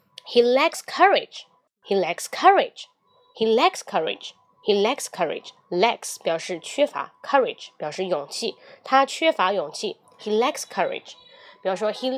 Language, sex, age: Chinese, female, 20-39